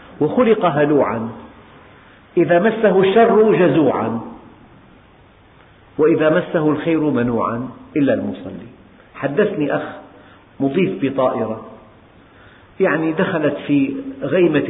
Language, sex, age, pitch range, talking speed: Arabic, male, 50-69, 130-185 Hz, 80 wpm